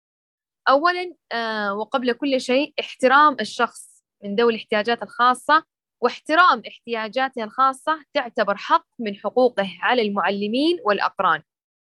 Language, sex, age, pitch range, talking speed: Arabic, female, 20-39, 210-265 Hz, 100 wpm